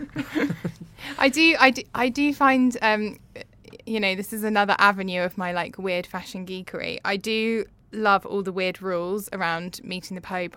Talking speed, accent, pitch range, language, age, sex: 175 wpm, British, 180-210 Hz, English, 10-29, female